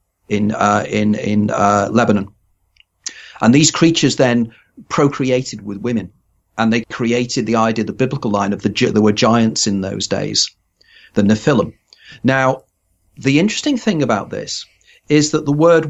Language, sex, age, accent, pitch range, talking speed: English, male, 40-59, British, 110-140 Hz, 155 wpm